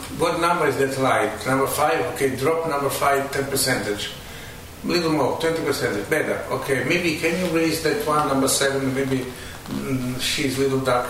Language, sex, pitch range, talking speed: English, male, 120-145 Hz, 180 wpm